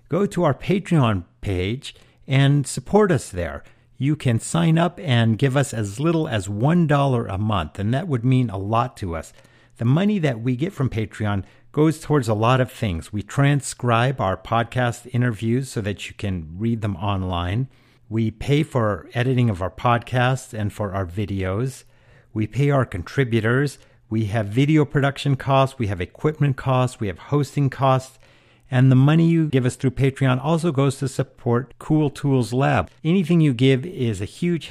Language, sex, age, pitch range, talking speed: English, male, 50-69, 110-140 Hz, 180 wpm